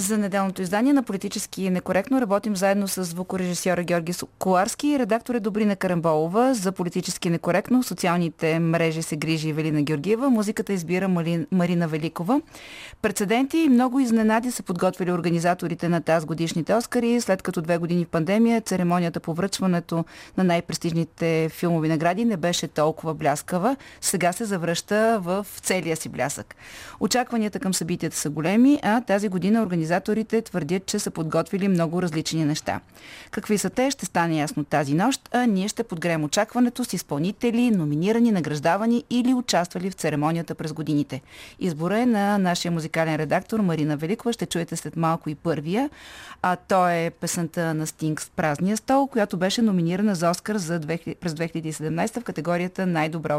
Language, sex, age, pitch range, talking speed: Bulgarian, female, 30-49, 165-215 Hz, 155 wpm